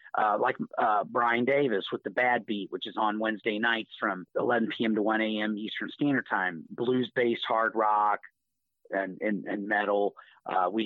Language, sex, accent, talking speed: English, male, American, 175 wpm